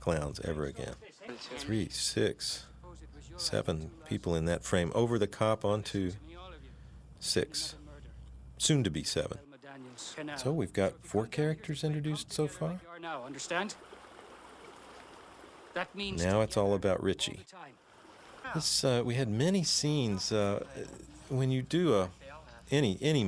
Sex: male